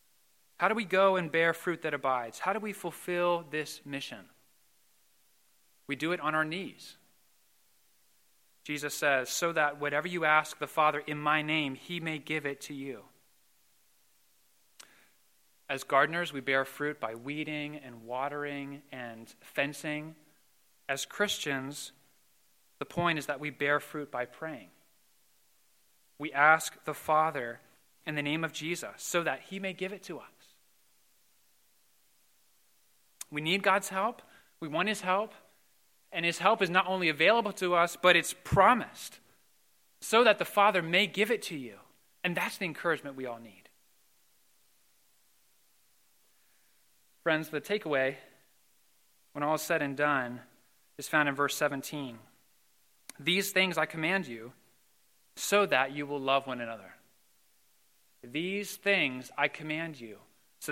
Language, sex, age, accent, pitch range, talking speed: English, male, 30-49, American, 140-175 Hz, 145 wpm